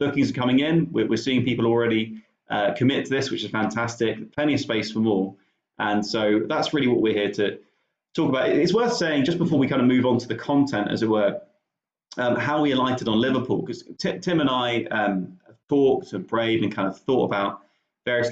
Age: 30-49